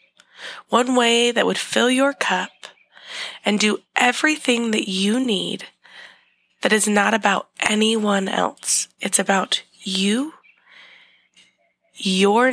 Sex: female